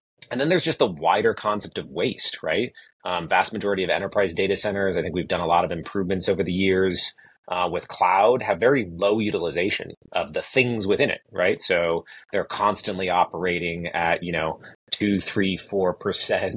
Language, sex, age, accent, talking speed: English, male, 30-49, American, 180 wpm